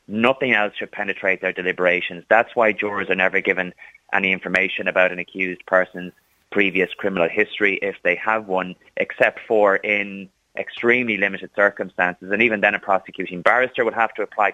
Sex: male